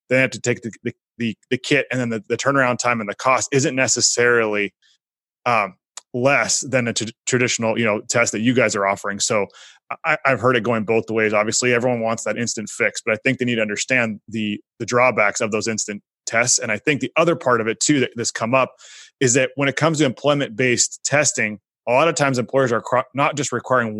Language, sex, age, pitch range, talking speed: English, male, 20-39, 115-135 Hz, 235 wpm